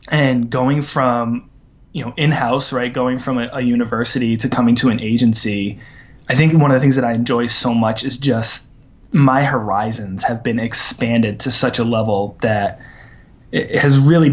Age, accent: 20-39, American